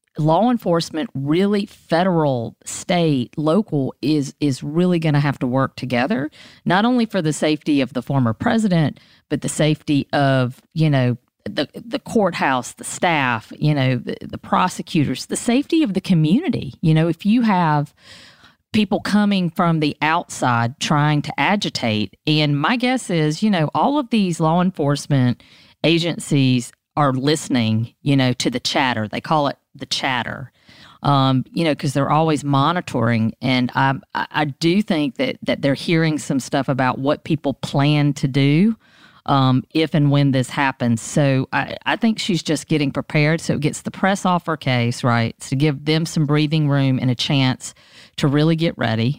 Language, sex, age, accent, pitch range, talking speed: English, female, 40-59, American, 130-170 Hz, 175 wpm